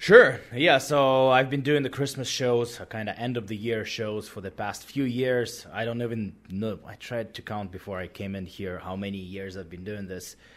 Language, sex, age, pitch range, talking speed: English, male, 20-39, 95-120 Hz, 235 wpm